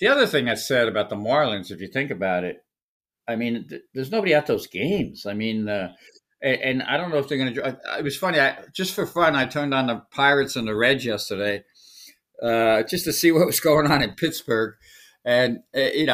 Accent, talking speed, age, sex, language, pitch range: American, 225 wpm, 60-79, male, English, 125-160 Hz